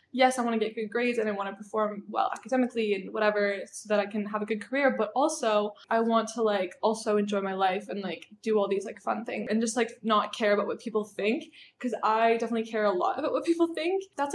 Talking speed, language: 260 wpm, English